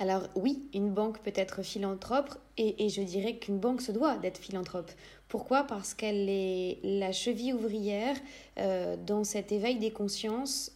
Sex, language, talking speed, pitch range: female, French, 165 wpm, 195-225 Hz